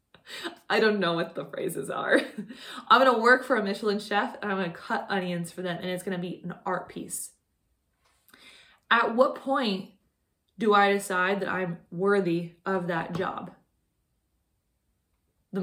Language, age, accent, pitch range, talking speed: English, 20-39, American, 190-235 Hz, 170 wpm